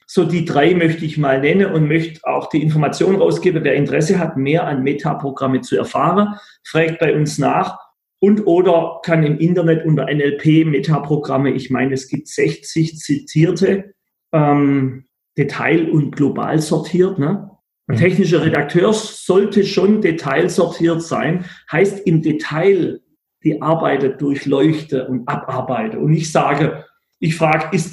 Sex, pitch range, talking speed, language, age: male, 150-185 Hz, 140 wpm, German, 40-59